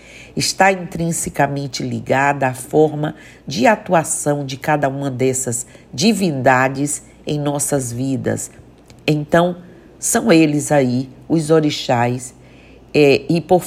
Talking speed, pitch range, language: 100 wpm, 135-175 Hz, Portuguese